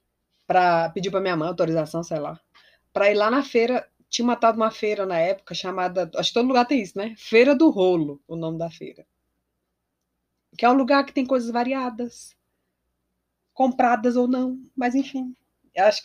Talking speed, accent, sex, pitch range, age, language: 180 wpm, Brazilian, female, 175-255 Hz, 20-39, Portuguese